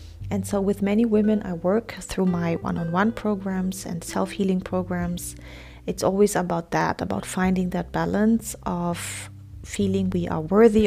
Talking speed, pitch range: 150 wpm, 130-200 Hz